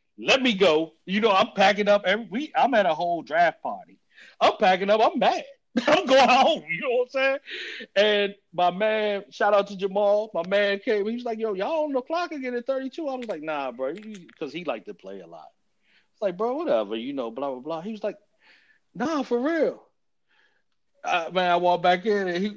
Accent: American